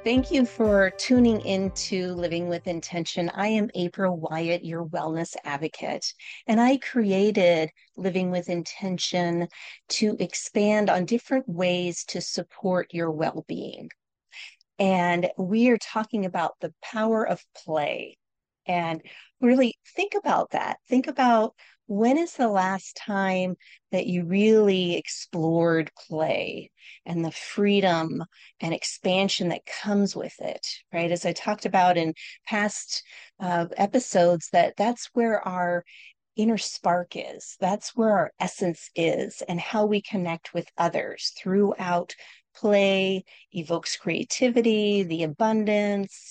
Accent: American